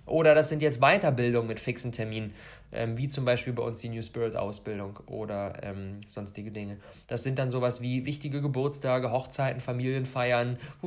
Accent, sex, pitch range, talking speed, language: German, male, 110-155 Hz, 175 wpm, German